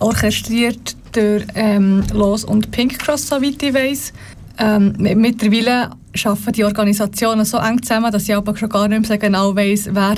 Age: 30-49